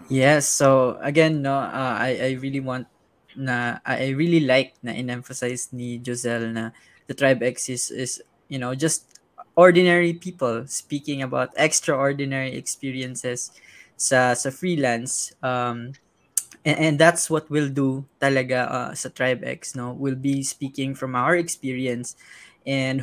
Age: 20-39